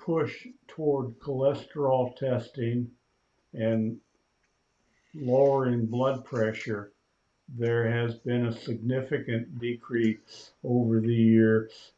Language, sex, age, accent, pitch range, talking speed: English, male, 60-79, American, 115-135 Hz, 85 wpm